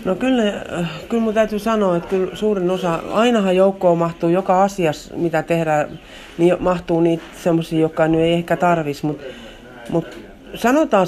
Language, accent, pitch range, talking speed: Finnish, native, 155-195 Hz, 155 wpm